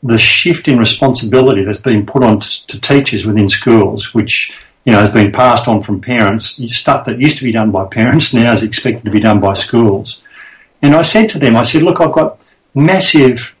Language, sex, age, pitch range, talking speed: English, male, 50-69, 110-140 Hz, 205 wpm